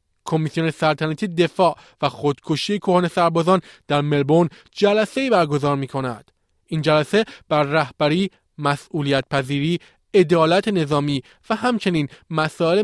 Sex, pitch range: male, 140-180 Hz